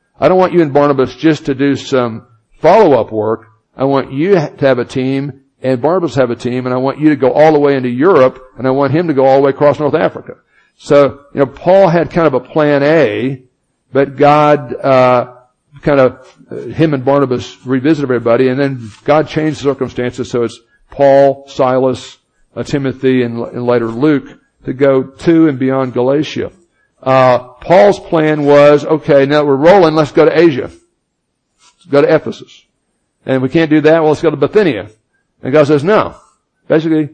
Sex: male